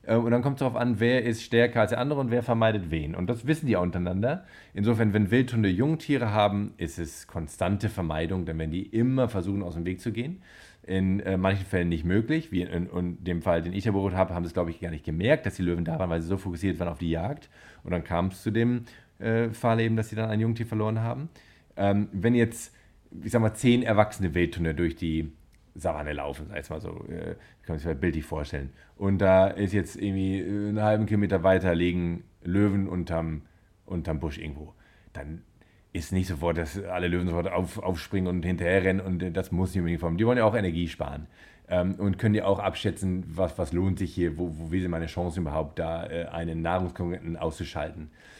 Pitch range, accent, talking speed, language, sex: 85-110 Hz, German, 220 wpm, German, male